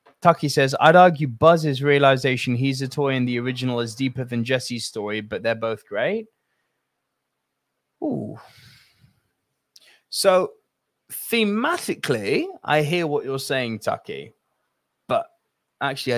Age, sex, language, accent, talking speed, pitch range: 20-39, male, English, British, 120 wpm, 115-155 Hz